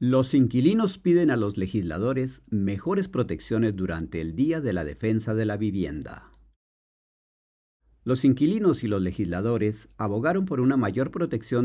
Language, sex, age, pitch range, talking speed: Spanish, male, 50-69, 90-125 Hz, 140 wpm